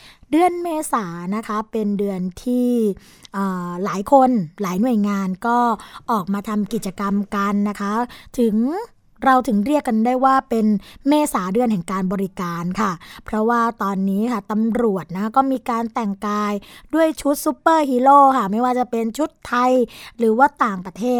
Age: 20-39